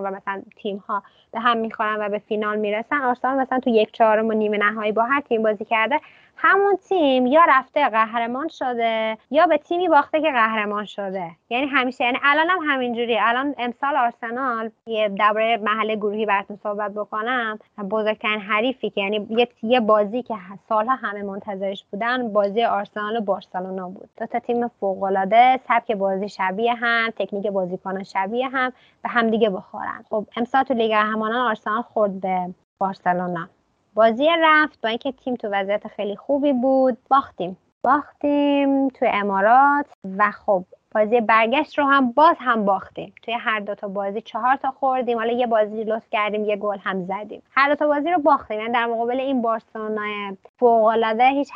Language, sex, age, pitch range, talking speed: English, female, 20-39, 210-255 Hz, 170 wpm